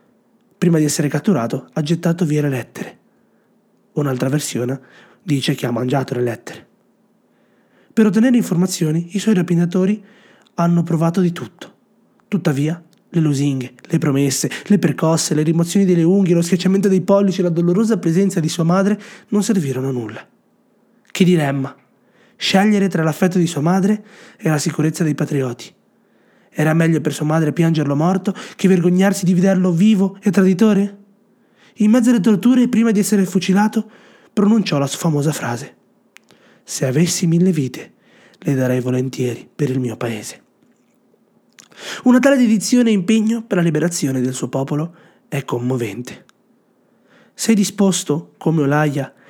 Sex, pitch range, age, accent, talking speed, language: male, 150-205 Hz, 30-49, native, 145 wpm, Italian